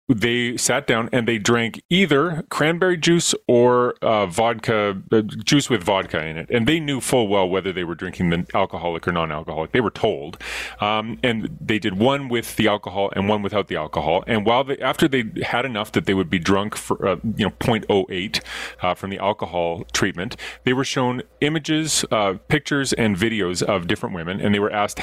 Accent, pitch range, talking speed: American, 95-125 Hz, 195 wpm